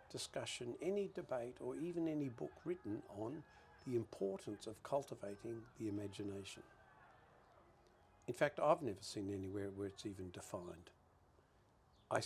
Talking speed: 125 wpm